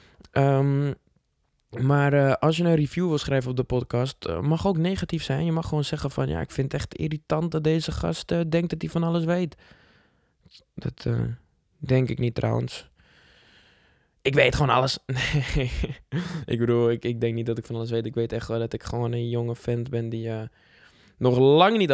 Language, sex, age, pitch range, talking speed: English, male, 20-39, 120-150 Hz, 200 wpm